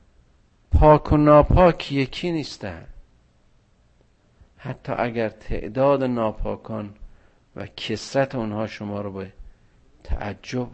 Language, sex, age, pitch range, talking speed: Persian, male, 50-69, 85-125 Hz, 90 wpm